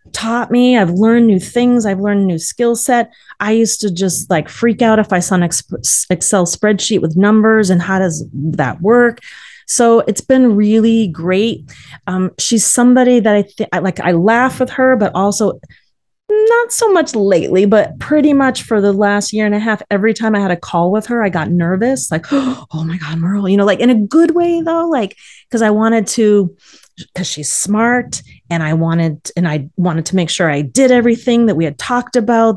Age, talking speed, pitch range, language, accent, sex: 30-49, 210 wpm, 175-230 Hz, English, American, female